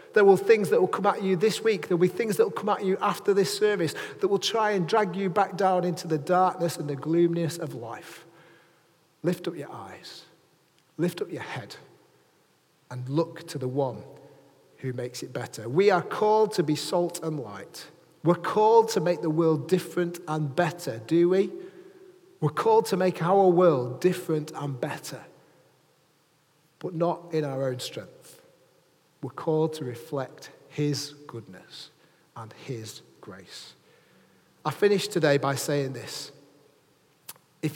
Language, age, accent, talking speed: English, 30-49, British, 170 wpm